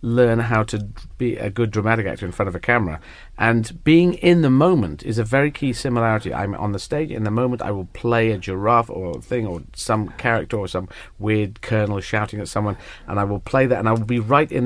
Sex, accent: male, British